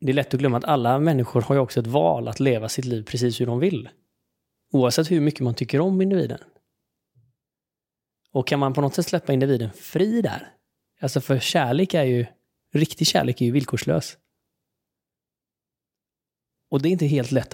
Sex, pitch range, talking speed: male, 115-145 Hz, 185 wpm